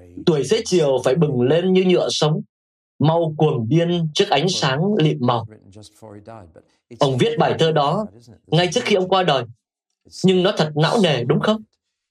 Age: 20-39